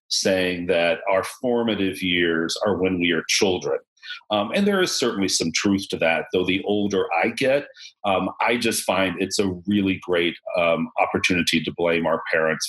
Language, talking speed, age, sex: English, 180 wpm, 40-59, male